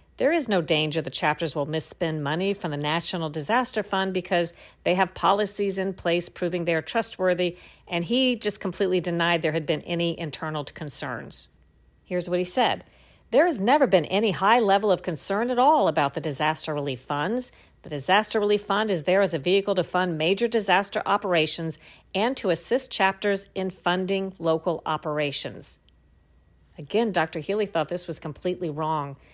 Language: English